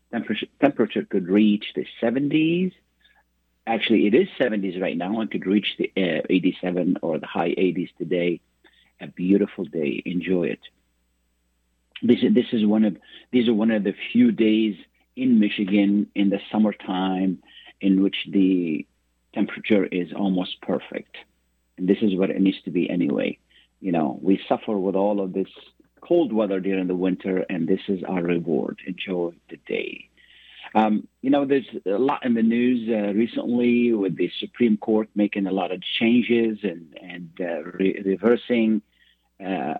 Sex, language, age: male, Arabic, 50-69